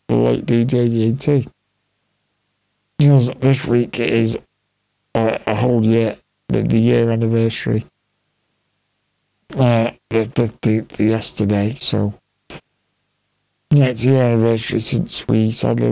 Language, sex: English, male